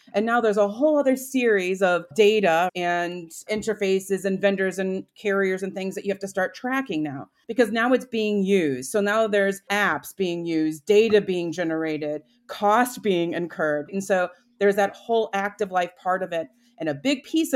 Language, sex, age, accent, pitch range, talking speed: English, female, 30-49, American, 180-215 Hz, 190 wpm